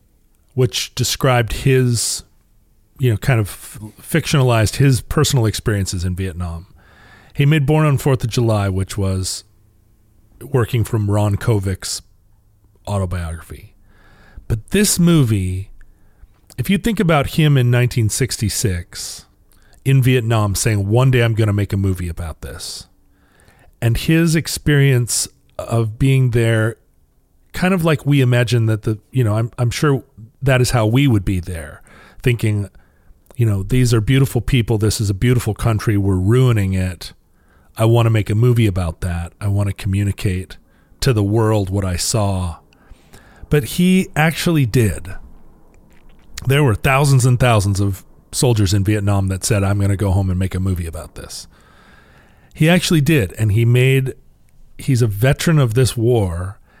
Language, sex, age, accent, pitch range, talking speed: English, male, 40-59, American, 95-125 Hz, 155 wpm